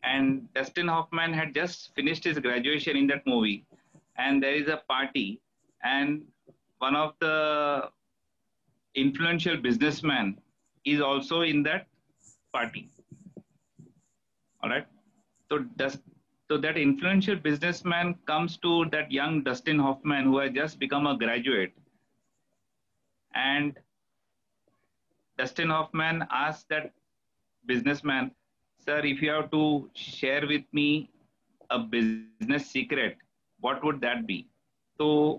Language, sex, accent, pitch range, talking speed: English, male, Indian, 140-160 Hz, 115 wpm